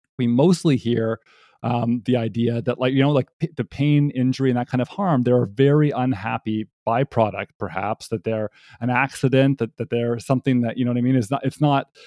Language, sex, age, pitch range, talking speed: English, male, 30-49, 115-135 Hz, 215 wpm